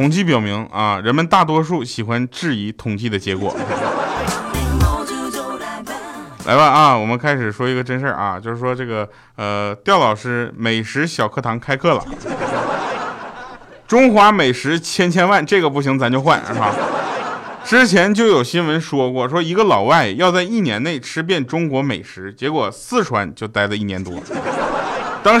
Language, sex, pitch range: Chinese, male, 115-175 Hz